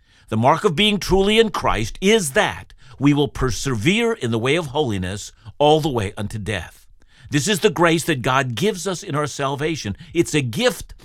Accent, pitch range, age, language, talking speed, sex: American, 110-170 Hz, 60-79, English, 195 wpm, male